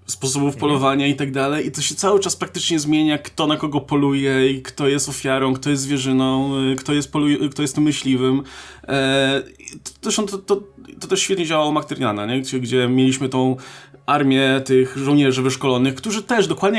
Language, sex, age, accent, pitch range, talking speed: Polish, male, 20-39, native, 125-150 Hz, 170 wpm